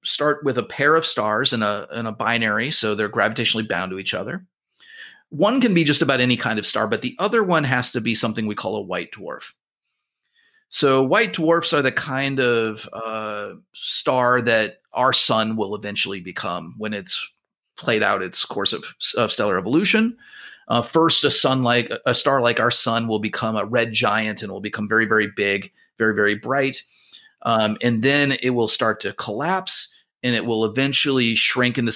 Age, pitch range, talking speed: 30-49, 110-145 Hz, 195 wpm